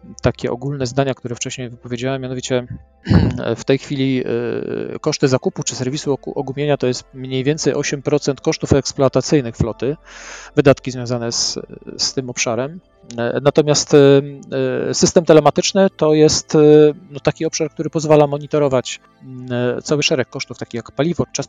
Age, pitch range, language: 40-59, 125-150 Hz, Polish